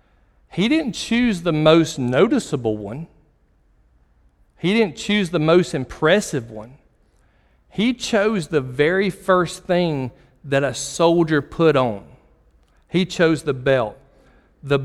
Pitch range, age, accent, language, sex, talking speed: 125-175 Hz, 40-59, American, English, male, 120 wpm